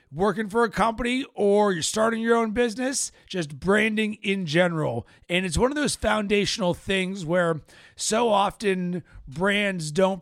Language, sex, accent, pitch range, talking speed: English, male, American, 170-220 Hz, 155 wpm